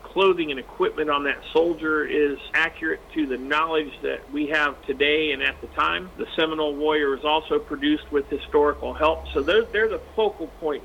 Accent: American